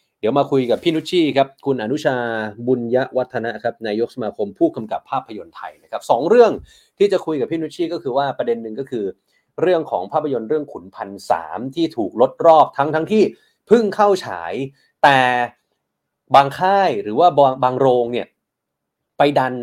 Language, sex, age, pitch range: Thai, male, 30-49, 120-170 Hz